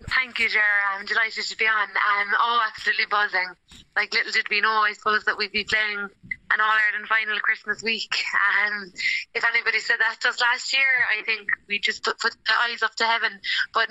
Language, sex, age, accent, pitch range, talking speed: English, female, 20-39, Irish, 185-220 Hz, 220 wpm